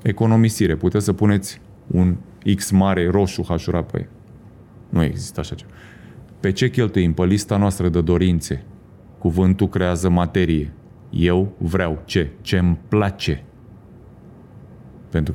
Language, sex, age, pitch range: Romanian, male, 30-49, 85-105 Hz